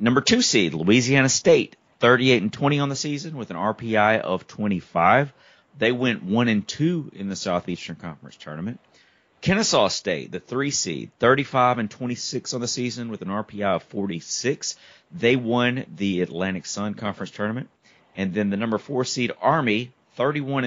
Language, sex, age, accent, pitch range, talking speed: English, male, 30-49, American, 95-120 Hz, 165 wpm